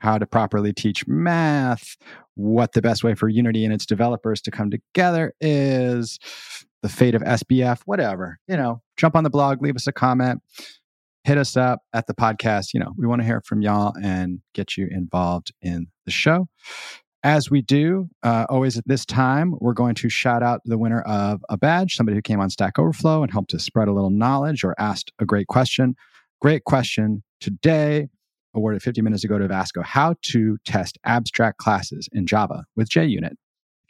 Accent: American